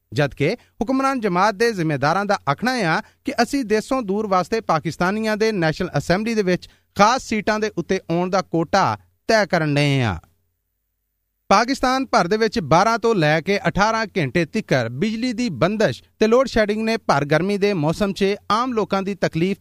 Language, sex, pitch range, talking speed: Punjabi, male, 160-220 Hz, 175 wpm